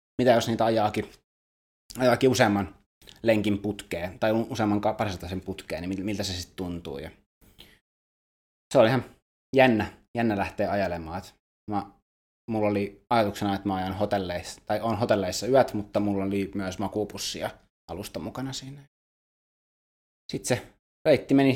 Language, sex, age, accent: Finnish, male, 20-39, native